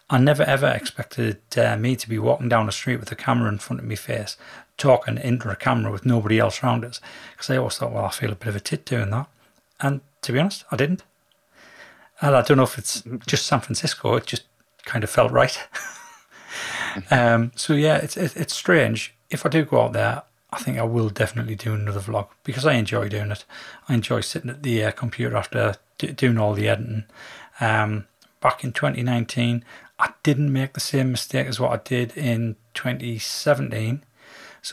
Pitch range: 110-130 Hz